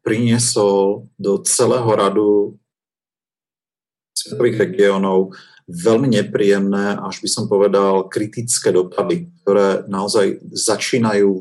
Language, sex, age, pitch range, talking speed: Slovak, male, 40-59, 100-120 Hz, 90 wpm